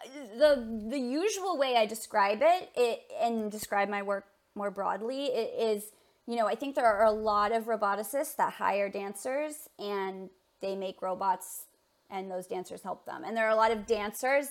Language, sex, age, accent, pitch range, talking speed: English, female, 20-39, American, 215-295 Hz, 185 wpm